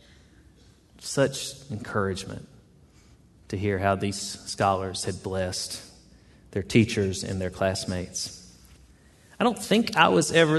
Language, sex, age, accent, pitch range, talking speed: English, male, 30-49, American, 105-130 Hz, 115 wpm